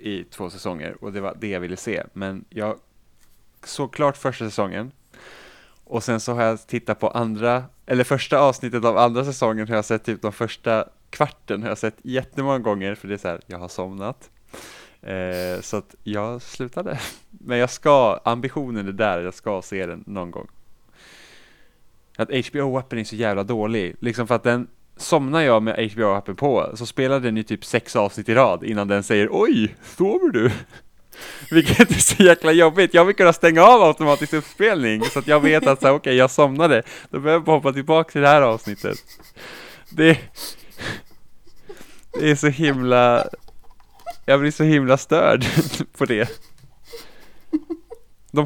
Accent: Norwegian